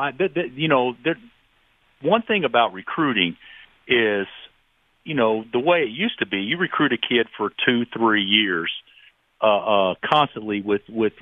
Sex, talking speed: male, 150 wpm